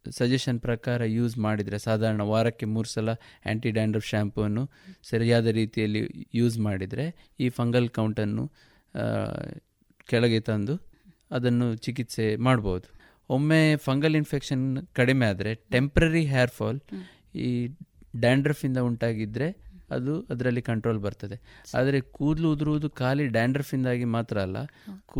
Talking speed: 100 wpm